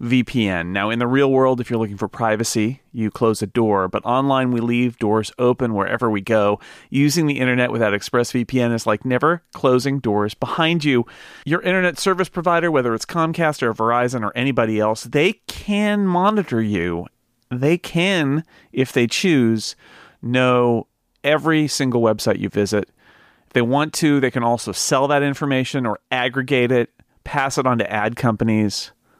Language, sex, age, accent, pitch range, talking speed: English, male, 40-59, American, 105-135 Hz, 170 wpm